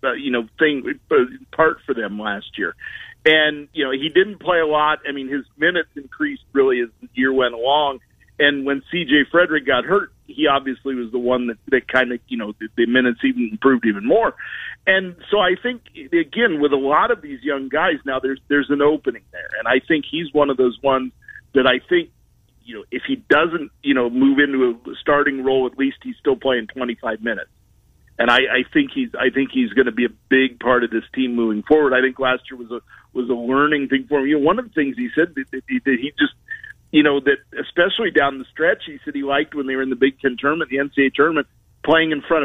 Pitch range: 130-160 Hz